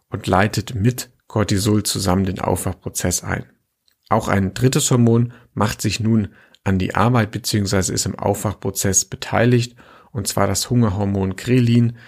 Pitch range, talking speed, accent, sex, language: 100-120 Hz, 140 wpm, German, male, German